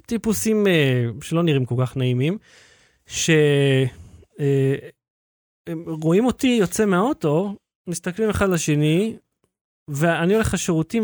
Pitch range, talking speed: 145-195 Hz, 100 wpm